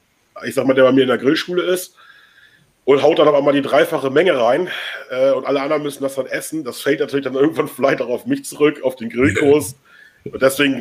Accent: German